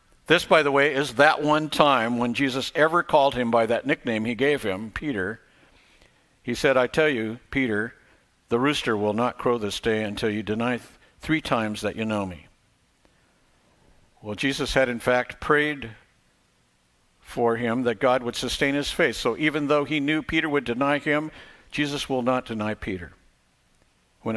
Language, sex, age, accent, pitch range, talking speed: English, male, 60-79, American, 115-145 Hz, 175 wpm